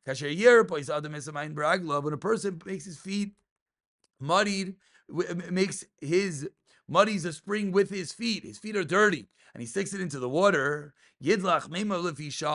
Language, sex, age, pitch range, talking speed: English, male, 30-49, 150-200 Hz, 170 wpm